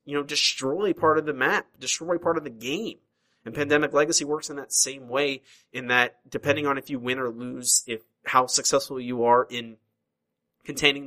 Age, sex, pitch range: 30-49, male, 115-140 Hz